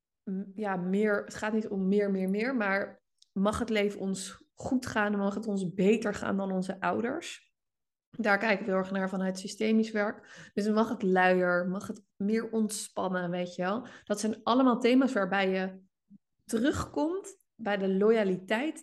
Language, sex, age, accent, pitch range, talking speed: Dutch, female, 20-39, Dutch, 190-225 Hz, 170 wpm